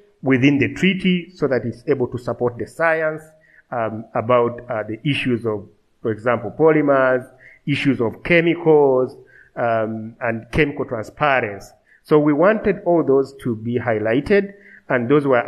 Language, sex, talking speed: English, male, 145 wpm